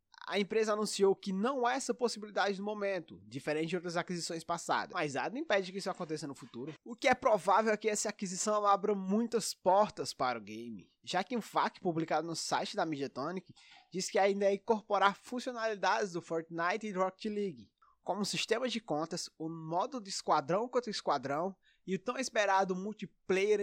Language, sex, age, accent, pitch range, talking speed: English, male, 20-39, Brazilian, 165-220 Hz, 185 wpm